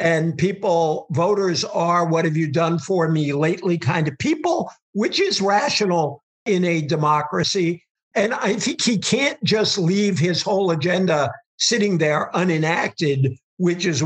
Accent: American